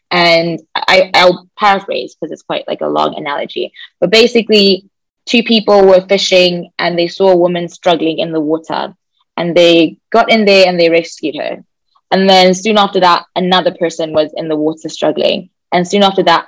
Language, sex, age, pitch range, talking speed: English, female, 20-39, 170-205 Hz, 185 wpm